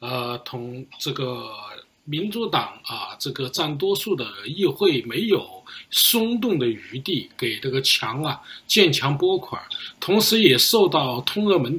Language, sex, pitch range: Chinese, male, 140-210 Hz